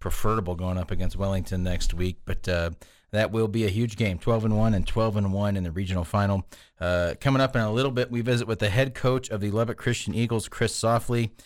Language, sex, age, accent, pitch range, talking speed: English, male, 40-59, American, 95-110 Hz, 240 wpm